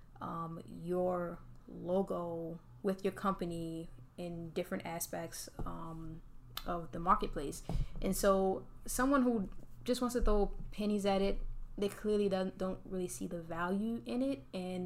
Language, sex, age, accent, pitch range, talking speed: English, female, 10-29, American, 170-195 Hz, 140 wpm